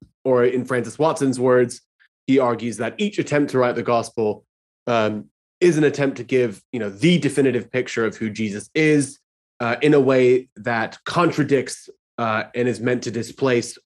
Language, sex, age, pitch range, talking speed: English, male, 20-39, 115-140 Hz, 180 wpm